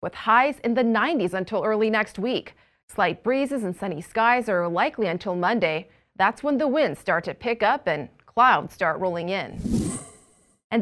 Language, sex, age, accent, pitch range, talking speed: English, female, 30-49, American, 195-255 Hz, 175 wpm